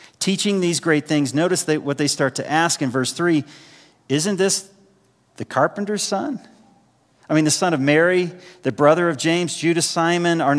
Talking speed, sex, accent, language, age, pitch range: 180 wpm, male, American, English, 40-59, 140-180 Hz